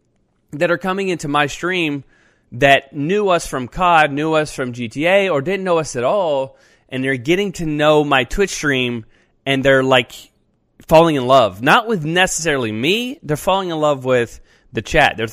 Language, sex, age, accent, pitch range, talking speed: English, male, 20-39, American, 120-160 Hz, 185 wpm